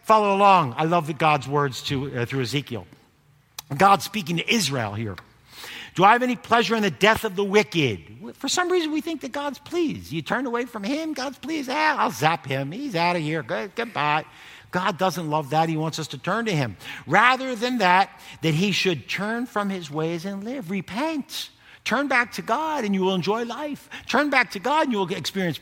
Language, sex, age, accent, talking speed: English, male, 50-69, American, 210 wpm